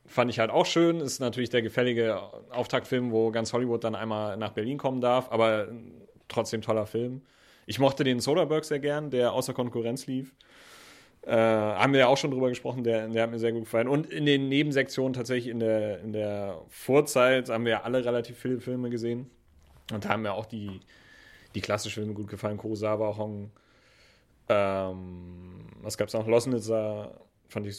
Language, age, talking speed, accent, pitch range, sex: German, 30-49, 190 wpm, German, 110-130 Hz, male